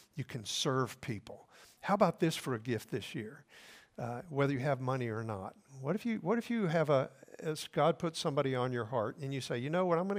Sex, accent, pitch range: male, American, 115-150 Hz